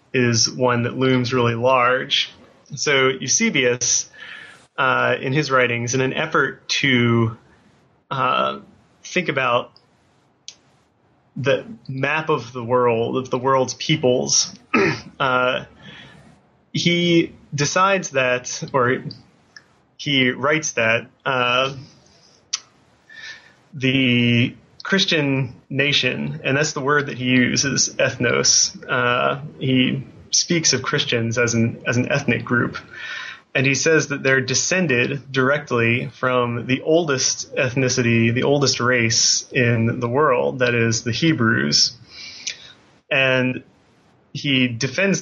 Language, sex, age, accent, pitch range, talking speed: English, male, 20-39, American, 120-140 Hz, 110 wpm